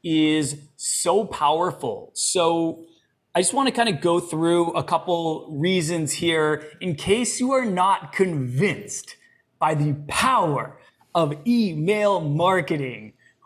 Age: 20-39